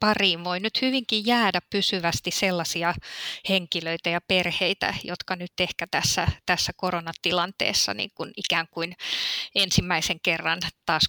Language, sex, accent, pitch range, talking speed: Finnish, female, native, 170-195 Hz, 125 wpm